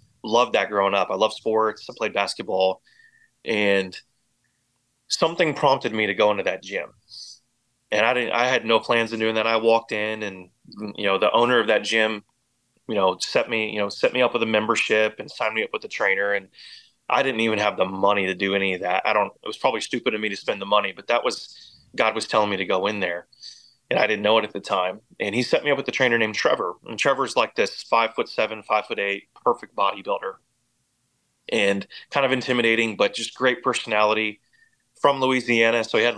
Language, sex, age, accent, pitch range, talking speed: English, male, 30-49, American, 105-120 Hz, 225 wpm